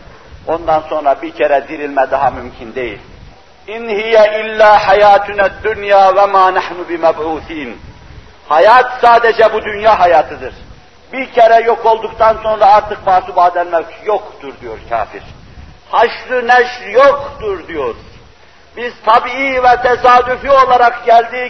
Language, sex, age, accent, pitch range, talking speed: Turkish, male, 60-79, native, 220-250 Hz, 115 wpm